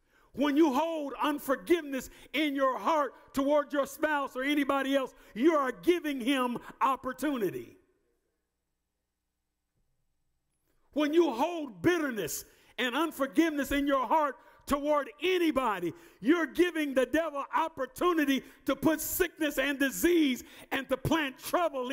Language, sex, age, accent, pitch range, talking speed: English, male, 50-69, American, 245-315 Hz, 120 wpm